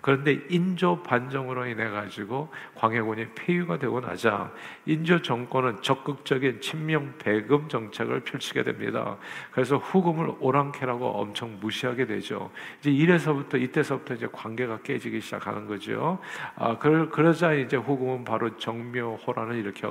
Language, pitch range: Korean, 110-140 Hz